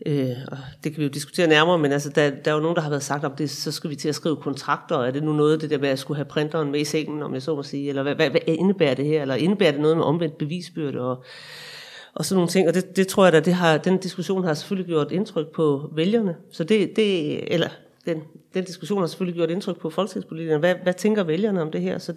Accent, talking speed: native, 275 wpm